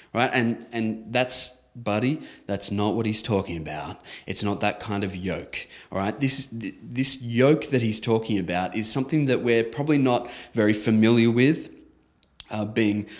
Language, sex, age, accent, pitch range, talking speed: English, male, 20-39, Australian, 95-115 Hz, 175 wpm